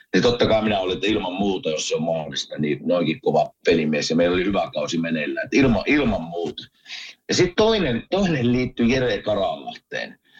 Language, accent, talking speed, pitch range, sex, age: Finnish, native, 180 wpm, 105-160 Hz, male, 50-69